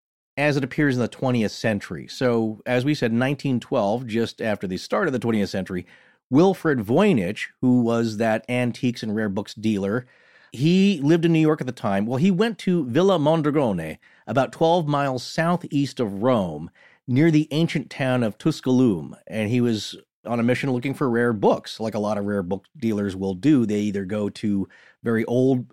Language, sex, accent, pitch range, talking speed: English, male, American, 110-145 Hz, 190 wpm